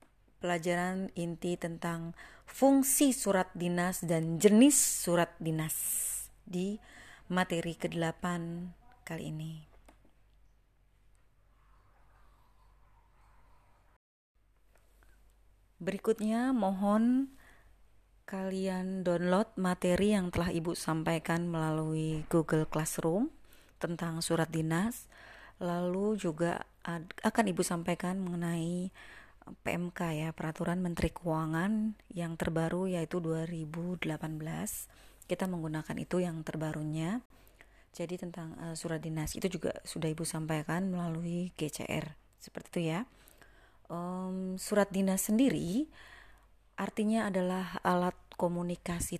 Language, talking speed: Indonesian, 90 wpm